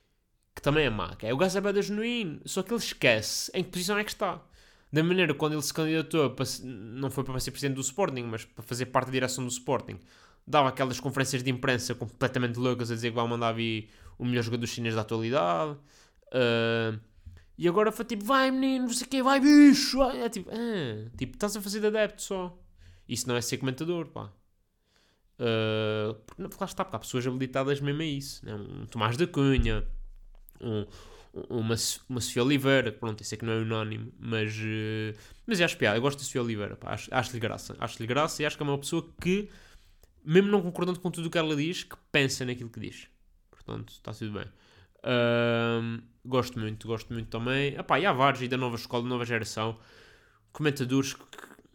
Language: Portuguese